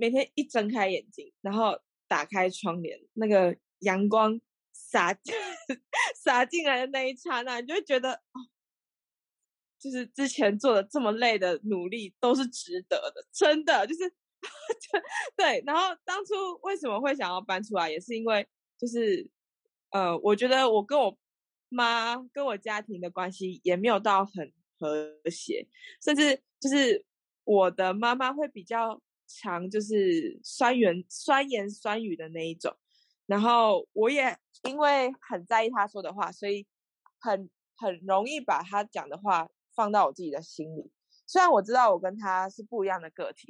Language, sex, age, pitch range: Chinese, female, 20-39, 195-280 Hz